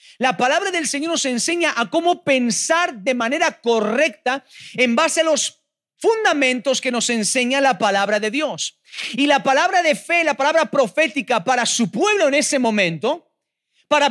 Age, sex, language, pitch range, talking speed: 40-59, male, Spanish, 190-285 Hz, 165 wpm